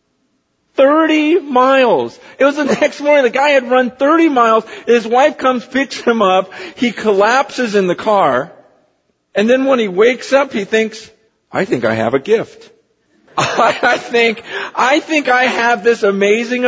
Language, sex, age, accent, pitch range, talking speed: English, male, 50-69, American, 205-280 Hz, 160 wpm